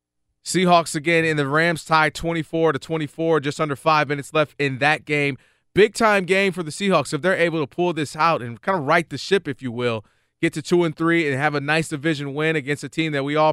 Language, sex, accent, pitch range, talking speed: English, male, American, 140-175 Hz, 255 wpm